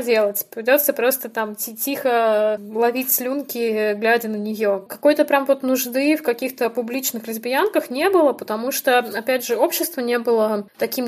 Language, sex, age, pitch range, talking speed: Russian, female, 20-39, 220-260 Hz, 150 wpm